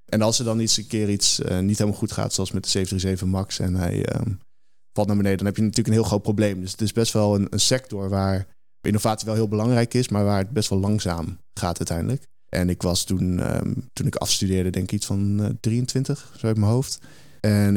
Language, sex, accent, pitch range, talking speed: Dutch, male, Dutch, 95-115 Hz, 245 wpm